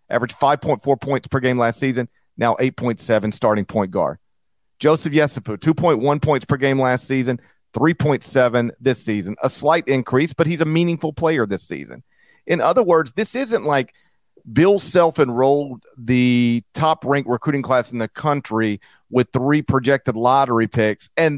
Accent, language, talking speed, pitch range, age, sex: American, English, 150 wpm, 110-140 Hz, 40-59, male